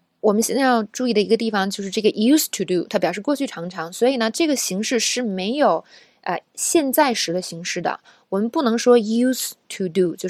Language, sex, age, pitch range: Chinese, female, 20-39, 185-235 Hz